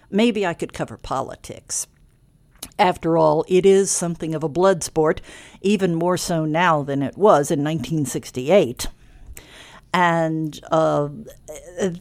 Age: 60-79